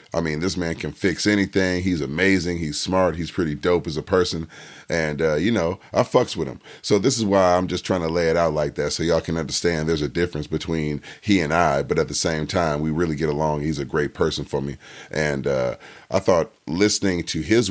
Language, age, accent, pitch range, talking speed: English, 30-49, American, 80-95 Hz, 240 wpm